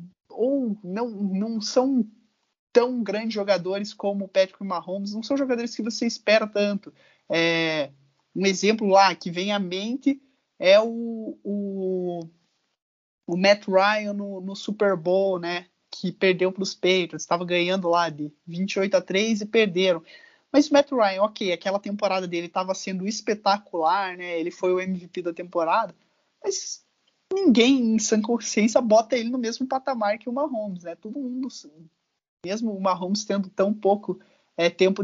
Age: 20-39